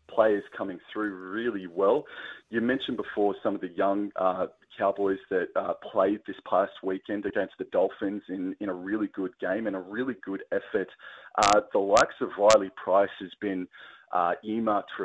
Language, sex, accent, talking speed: English, male, Australian, 180 wpm